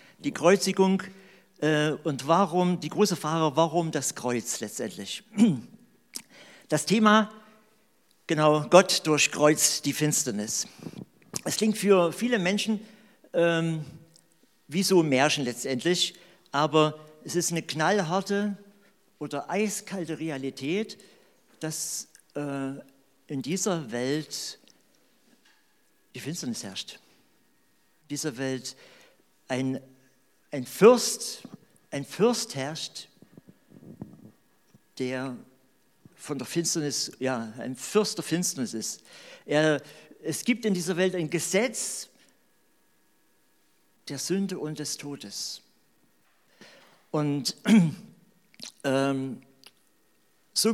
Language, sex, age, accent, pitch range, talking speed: German, male, 50-69, German, 140-195 Hz, 95 wpm